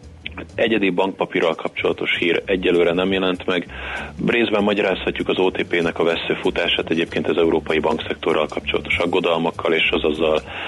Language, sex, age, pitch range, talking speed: Hungarian, male, 30-49, 80-95 Hz, 130 wpm